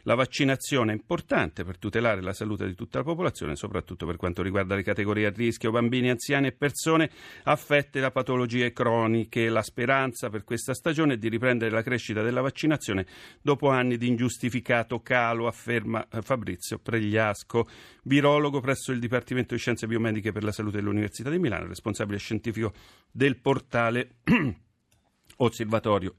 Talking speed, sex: 150 wpm, male